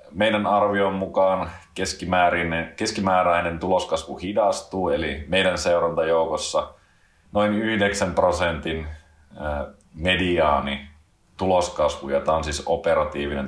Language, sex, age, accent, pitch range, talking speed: Finnish, male, 30-49, native, 80-90 Hz, 85 wpm